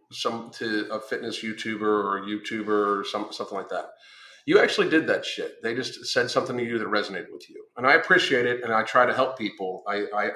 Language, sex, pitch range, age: English, male, 110-155 Hz, 40-59